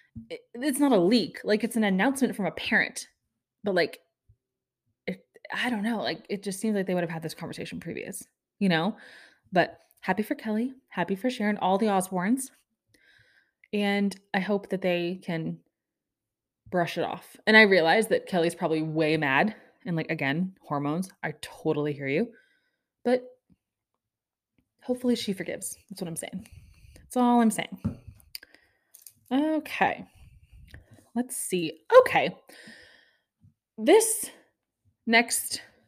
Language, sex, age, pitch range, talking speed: English, female, 20-39, 165-230 Hz, 140 wpm